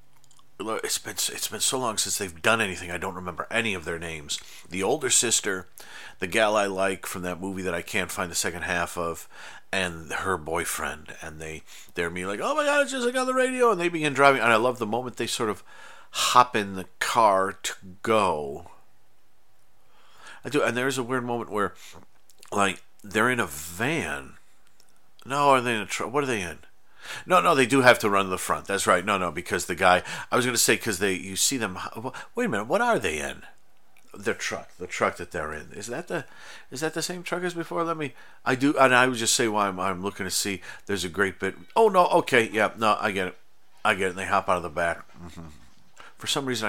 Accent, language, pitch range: American, English, 90-130 Hz